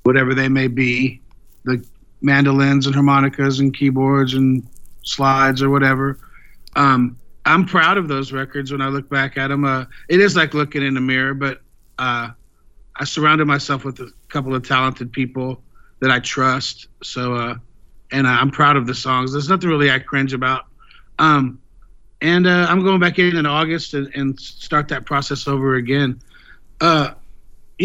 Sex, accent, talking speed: male, American, 170 wpm